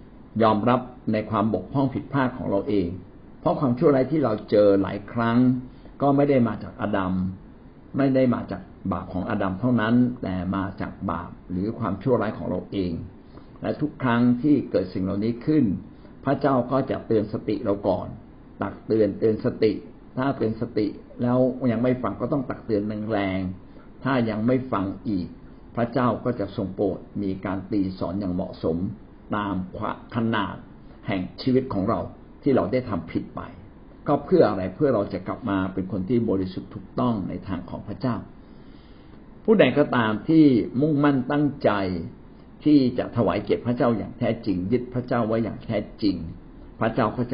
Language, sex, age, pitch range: Thai, male, 60-79, 95-125 Hz